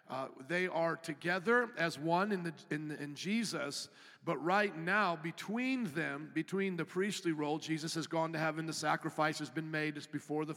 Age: 50-69